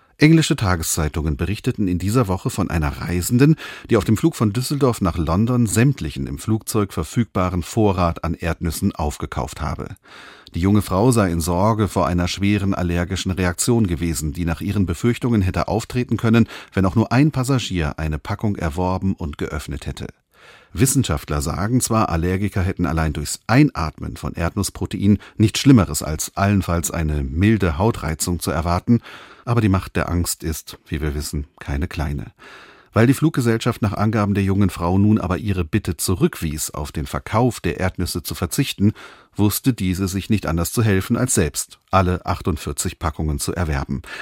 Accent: German